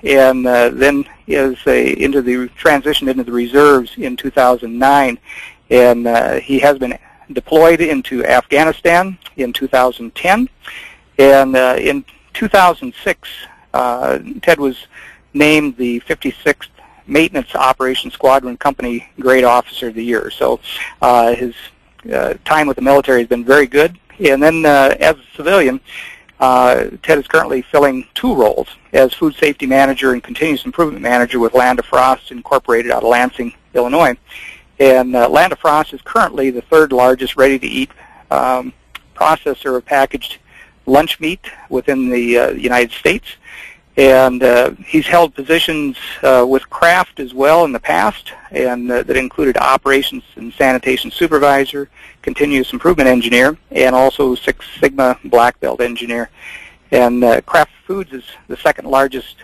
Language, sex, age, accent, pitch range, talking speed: English, male, 60-79, American, 125-150 Hz, 145 wpm